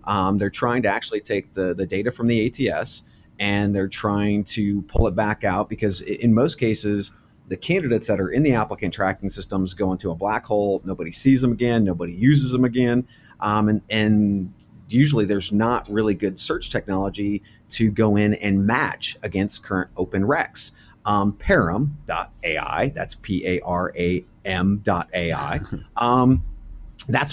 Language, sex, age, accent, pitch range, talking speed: English, male, 30-49, American, 95-120 Hz, 165 wpm